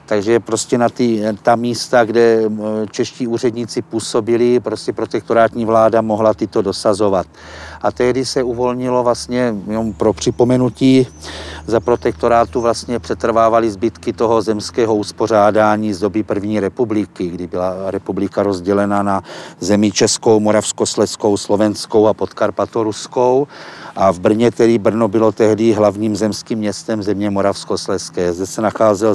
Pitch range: 105-120 Hz